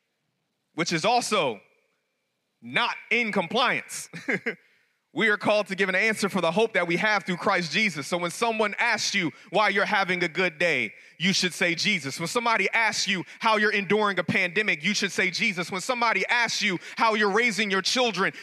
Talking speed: 190 wpm